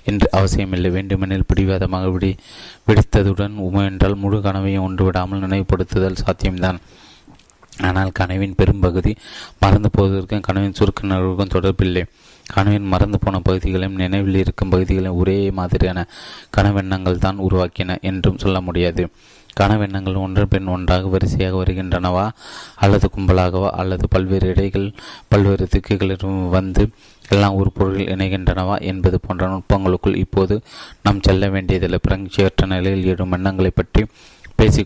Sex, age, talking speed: male, 20-39, 110 wpm